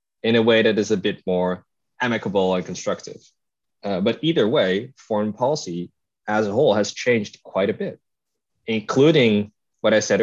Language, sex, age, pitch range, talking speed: Dutch, male, 20-39, 95-115 Hz, 170 wpm